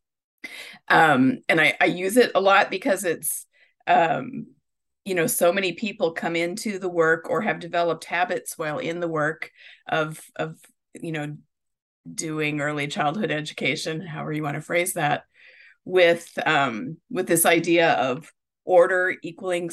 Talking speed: 150 wpm